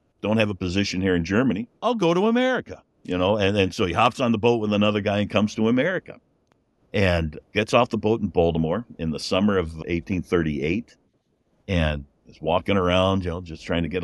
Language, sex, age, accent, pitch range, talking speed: English, male, 60-79, American, 85-115 Hz, 220 wpm